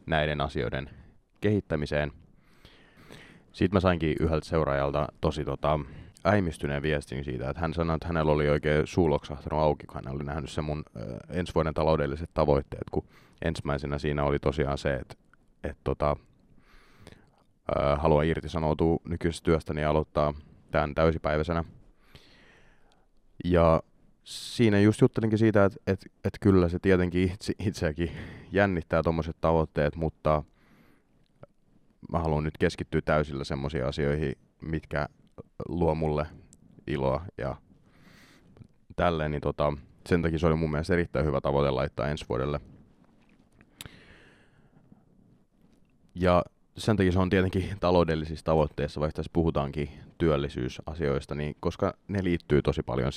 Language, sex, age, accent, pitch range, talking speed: Finnish, male, 30-49, native, 75-85 Hz, 125 wpm